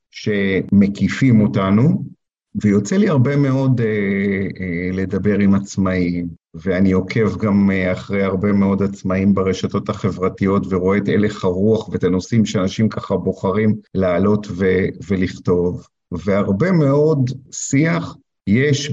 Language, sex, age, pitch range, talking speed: Hebrew, male, 50-69, 95-115 Hz, 115 wpm